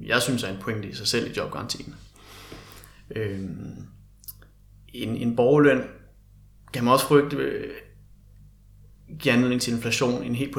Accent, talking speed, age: native, 135 wpm, 30-49